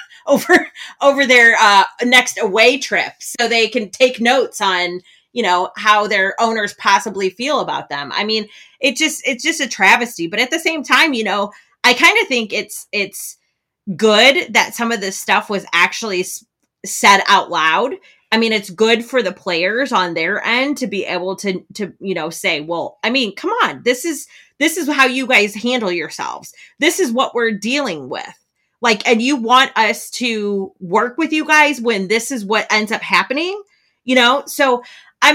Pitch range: 185-260 Hz